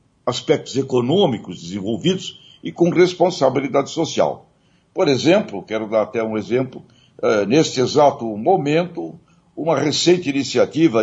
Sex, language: male, Portuguese